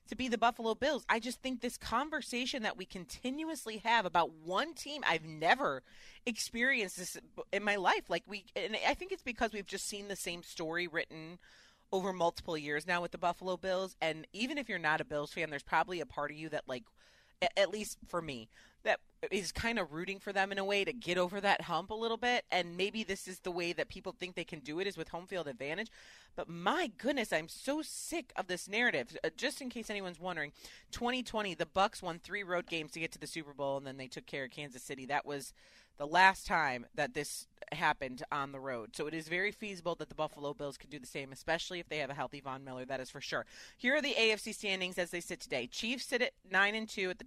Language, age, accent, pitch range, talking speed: English, 30-49, American, 160-210 Hz, 240 wpm